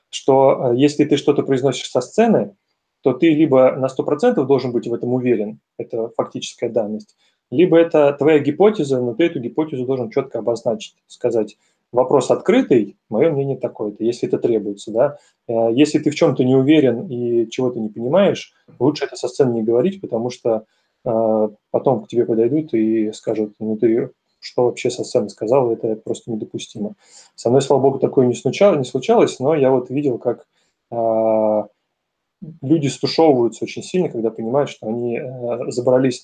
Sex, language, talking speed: male, Russian, 160 wpm